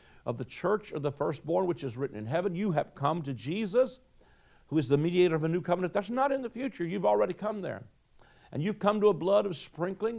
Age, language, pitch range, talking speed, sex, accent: 60-79, English, 150-205 Hz, 240 wpm, male, American